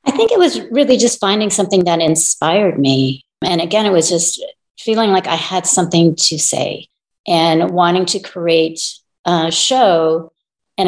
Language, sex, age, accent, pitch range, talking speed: English, female, 40-59, American, 160-185 Hz, 165 wpm